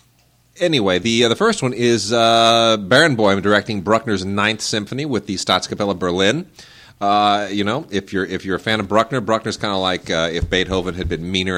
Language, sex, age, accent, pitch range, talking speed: English, male, 30-49, American, 95-125 Hz, 195 wpm